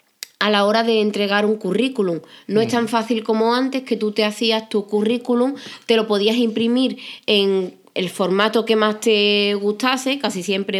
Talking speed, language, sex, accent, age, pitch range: 180 wpm, Spanish, female, Spanish, 20-39, 215-245 Hz